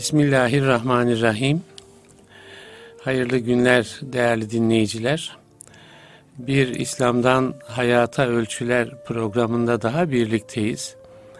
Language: Turkish